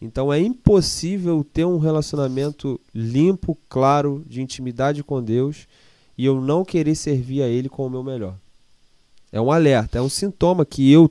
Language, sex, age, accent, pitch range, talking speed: Portuguese, male, 20-39, Brazilian, 130-170 Hz, 165 wpm